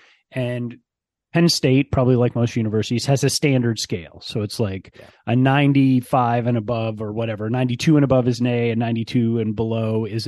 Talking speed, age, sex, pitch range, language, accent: 180 wpm, 30-49, male, 115-140 Hz, English, American